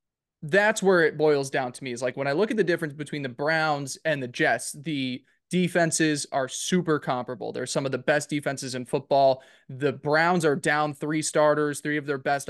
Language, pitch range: English, 135-155 Hz